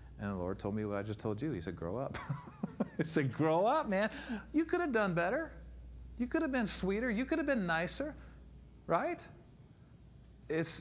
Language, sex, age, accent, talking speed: English, male, 40-59, American, 200 wpm